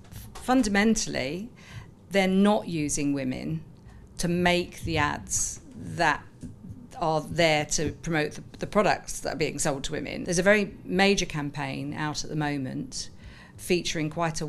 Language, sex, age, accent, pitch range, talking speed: English, female, 50-69, British, 150-185 Hz, 145 wpm